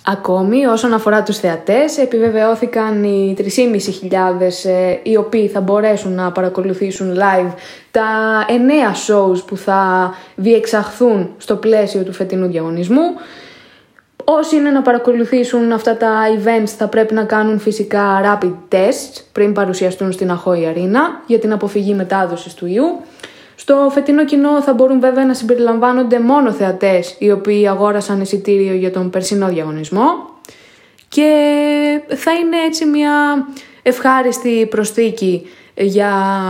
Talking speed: 125 wpm